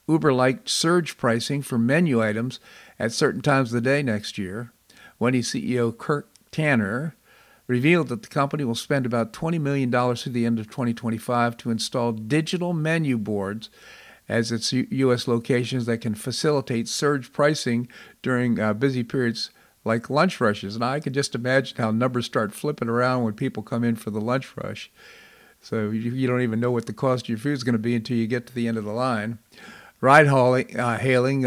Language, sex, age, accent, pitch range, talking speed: English, male, 50-69, American, 115-140 Hz, 185 wpm